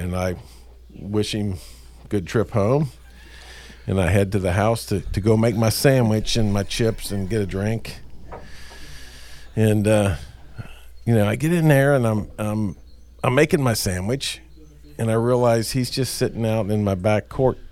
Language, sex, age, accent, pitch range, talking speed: English, male, 50-69, American, 90-115 Hz, 180 wpm